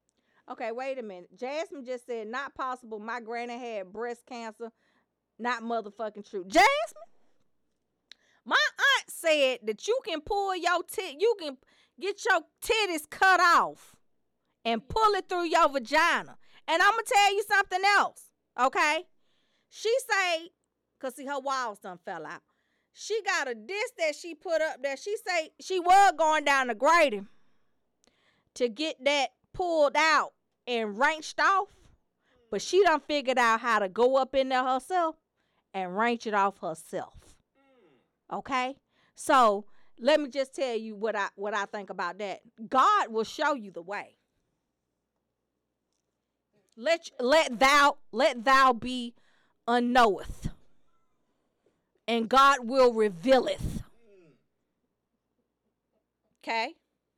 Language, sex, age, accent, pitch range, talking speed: English, female, 40-59, American, 235-330 Hz, 135 wpm